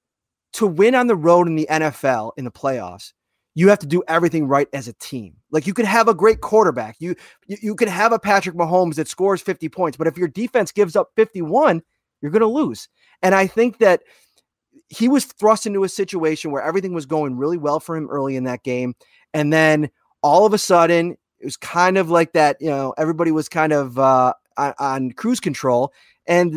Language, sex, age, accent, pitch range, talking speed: English, male, 30-49, American, 145-200 Hz, 215 wpm